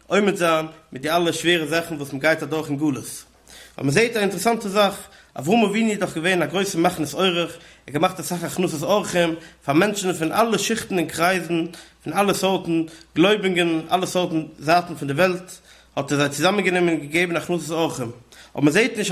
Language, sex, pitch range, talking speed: English, male, 155-195 Hz, 175 wpm